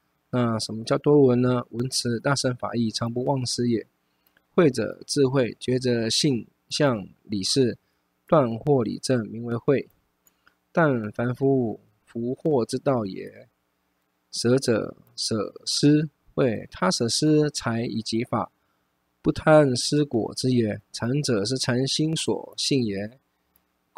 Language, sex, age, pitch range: Chinese, male, 20-39, 105-140 Hz